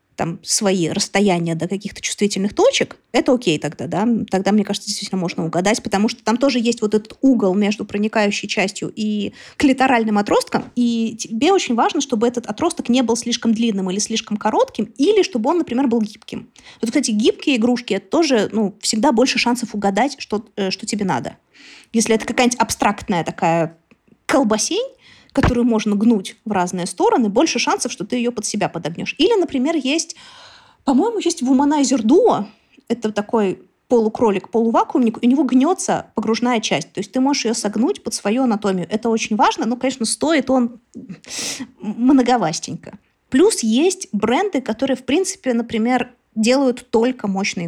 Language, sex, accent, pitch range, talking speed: Russian, female, native, 205-260 Hz, 160 wpm